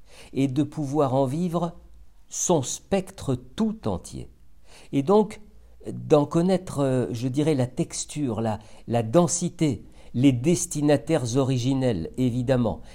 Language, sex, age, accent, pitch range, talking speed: French, male, 50-69, French, 100-135 Hz, 110 wpm